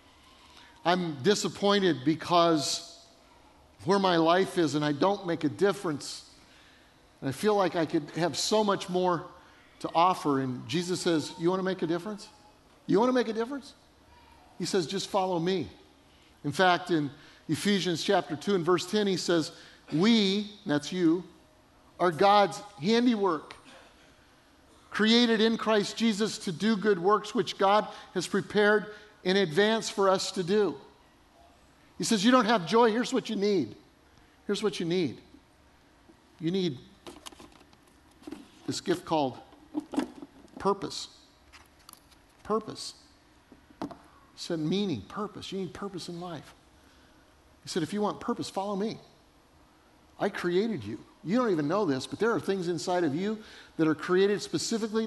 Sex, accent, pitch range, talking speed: male, American, 170-210 Hz, 145 wpm